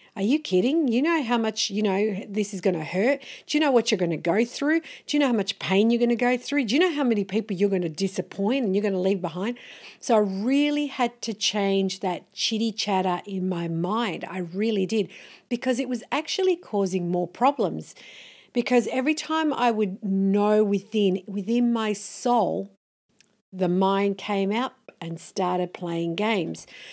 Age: 50-69